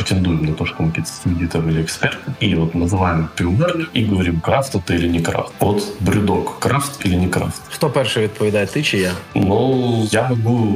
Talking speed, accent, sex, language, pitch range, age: 195 wpm, native, male, Ukrainian, 85-105 Hz, 20-39